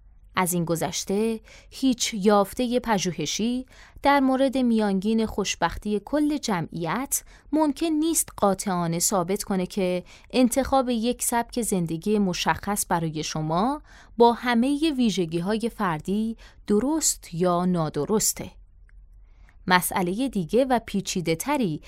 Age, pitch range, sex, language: 20-39, 175-245 Hz, female, Persian